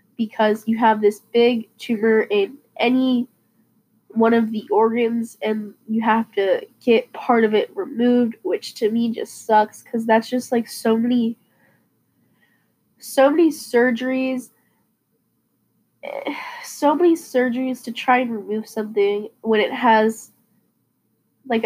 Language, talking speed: English, 130 wpm